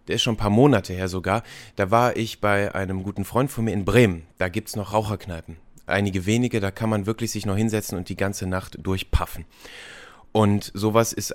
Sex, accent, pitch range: male, German, 95-120 Hz